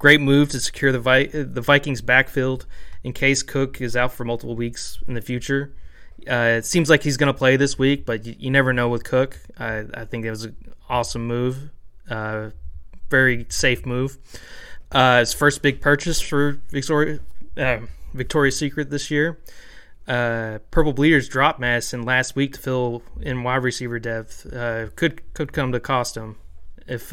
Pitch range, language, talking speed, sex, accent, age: 115-140 Hz, English, 185 wpm, male, American, 20-39